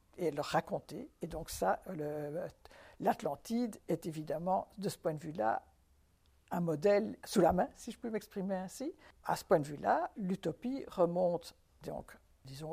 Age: 60-79